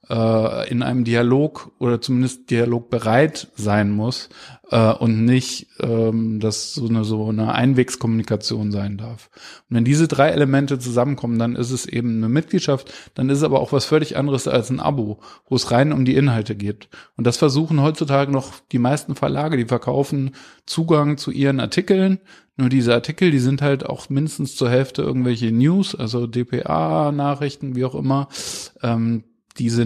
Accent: German